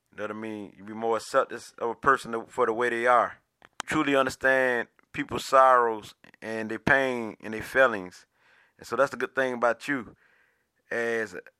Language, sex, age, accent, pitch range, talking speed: English, male, 20-39, American, 120-135 Hz, 185 wpm